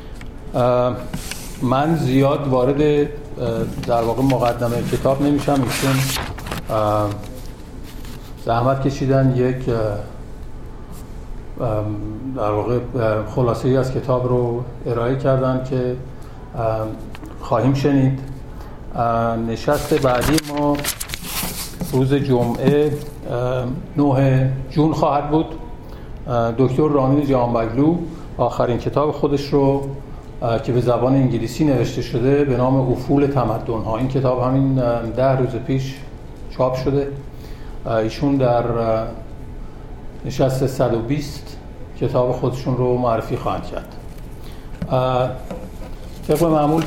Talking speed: 95 wpm